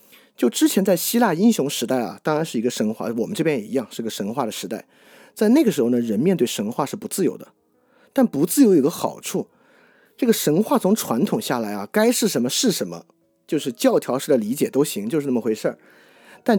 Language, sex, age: Chinese, male, 30-49